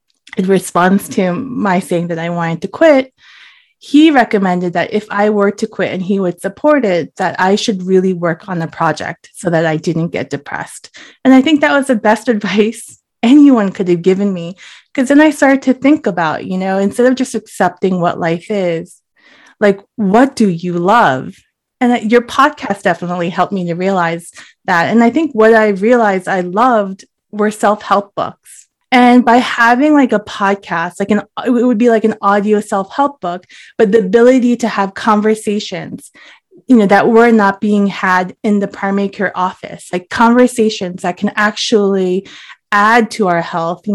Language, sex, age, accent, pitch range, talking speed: English, female, 20-39, American, 185-235 Hz, 185 wpm